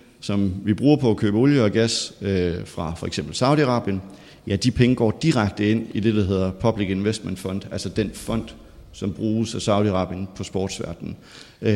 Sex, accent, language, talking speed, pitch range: male, native, Danish, 185 wpm, 100-125 Hz